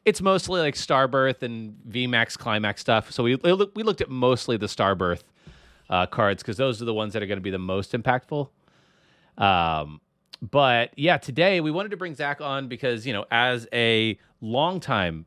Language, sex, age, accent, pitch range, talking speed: English, male, 30-49, American, 105-150 Hz, 185 wpm